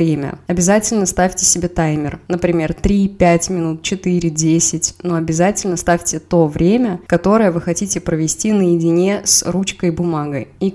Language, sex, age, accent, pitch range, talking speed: Russian, female, 20-39, native, 175-200 Hz, 130 wpm